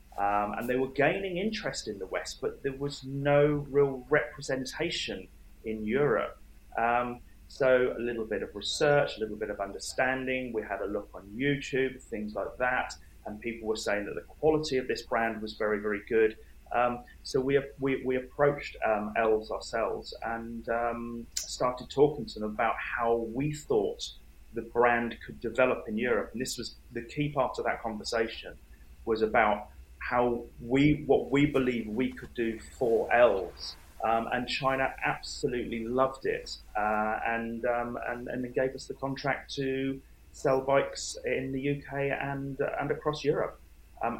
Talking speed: 170 wpm